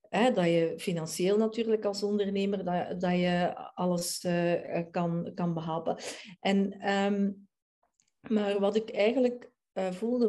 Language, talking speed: Dutch, 135 wpm